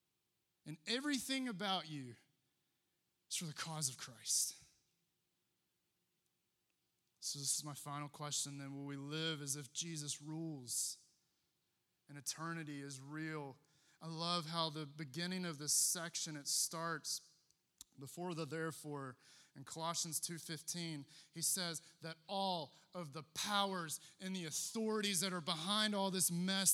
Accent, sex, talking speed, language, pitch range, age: American, male, 135 wpm, English, 145-190 Hz, 20-39